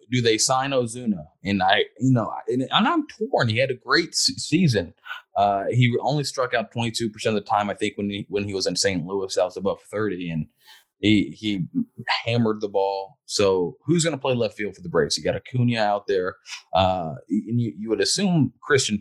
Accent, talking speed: American, 210 wpm